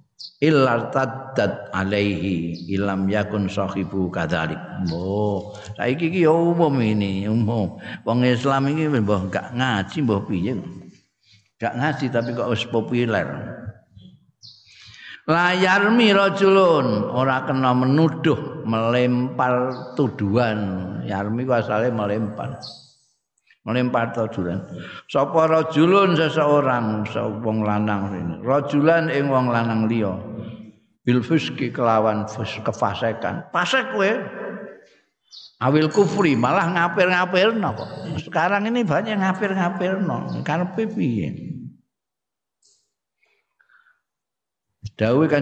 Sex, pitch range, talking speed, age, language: male, 105-160 Hz, 85 wpm, 50-69, Indonesian